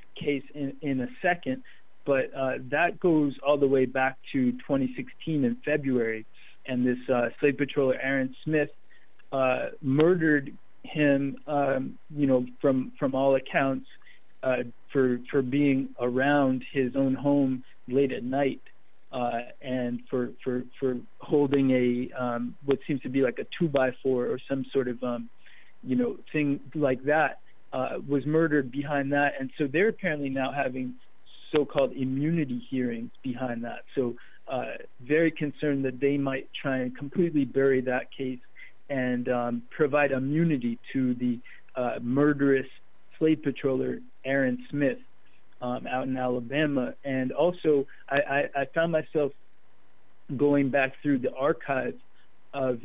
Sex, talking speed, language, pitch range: male, 150 wpm, English, 130-145 Hz